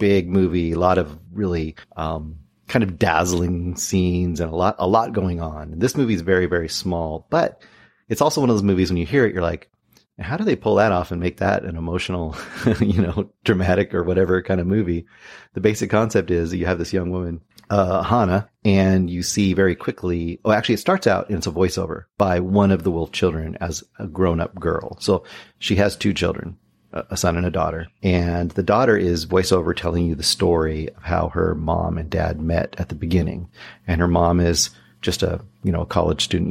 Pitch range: 85-100 Hz